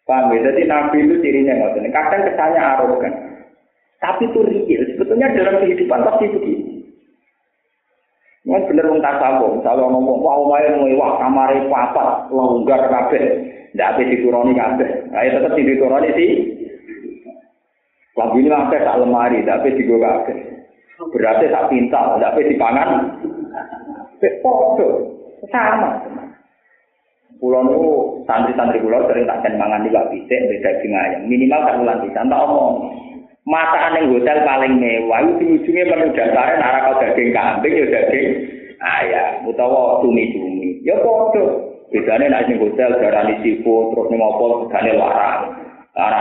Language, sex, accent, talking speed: Indonesian, male, native, 130 wpm